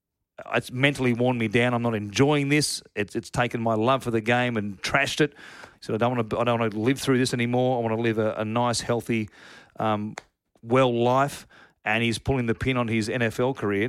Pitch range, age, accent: 110-140 Hz, 40-59, New Zealand